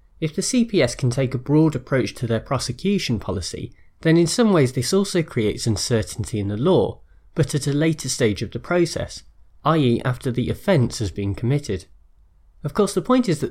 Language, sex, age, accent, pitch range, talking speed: English, male, 30-49, British, 110-160 Hz, 195 wpm